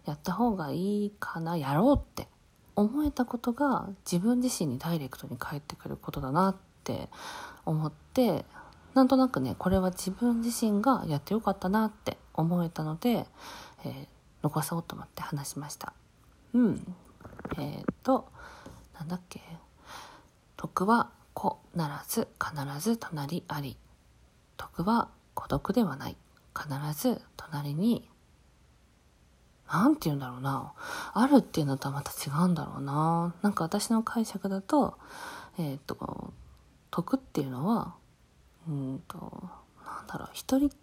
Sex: female